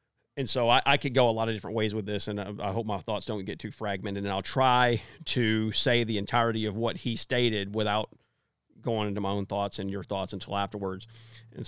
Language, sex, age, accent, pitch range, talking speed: English, male, 40-59, American, 110-130 Hz, 235 wpm